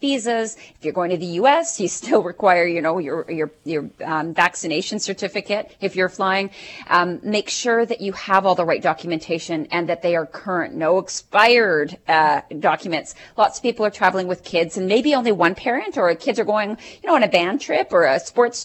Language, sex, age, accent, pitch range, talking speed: English, female, 40-59, American, 170-215 Hz, 210 wpm